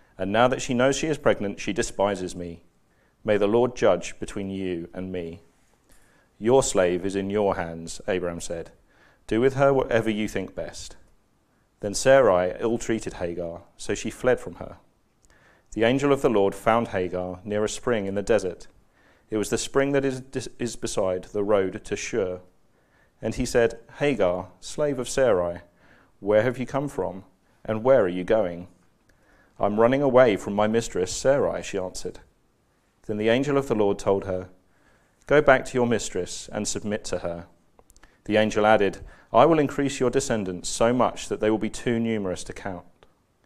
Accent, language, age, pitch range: British, English, 40-59, 90-115 Hz